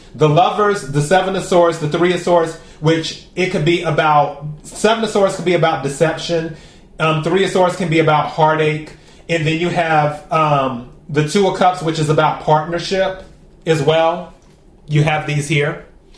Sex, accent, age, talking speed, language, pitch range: male, American, 30-49, 180 wpm, English, 155-180 Hz